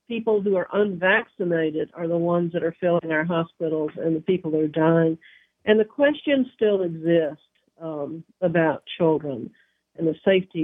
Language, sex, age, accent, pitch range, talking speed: English, female, 50-69, American, 160-185 Hz, 165 wpm